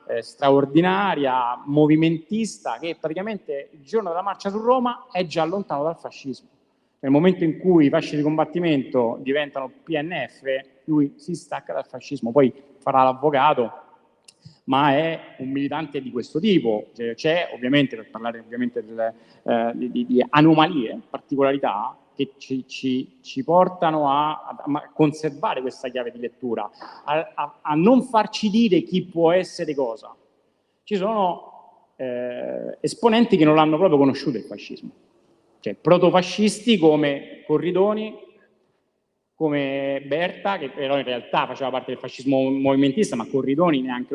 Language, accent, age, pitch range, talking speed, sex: Italian, native, 40-59, 135-185 Hz, 140 wpm, male